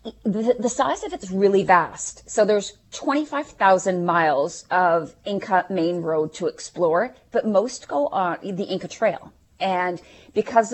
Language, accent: English, American